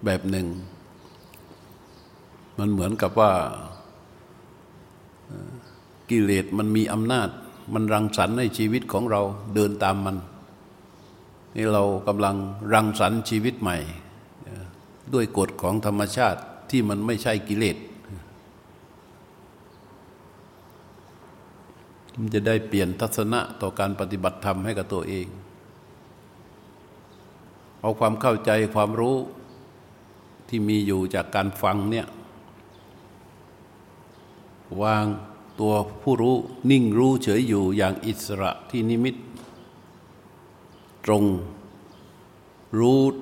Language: Thai